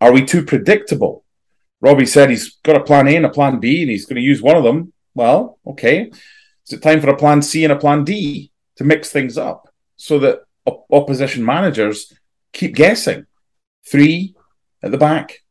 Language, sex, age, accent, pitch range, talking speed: English, male, 30-49, British, 105-150 Hz, 195 wpm